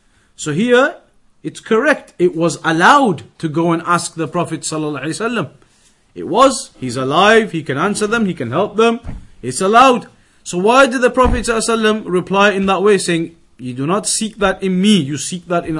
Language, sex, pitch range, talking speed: English, male, 160-205 Hz, 180 wpm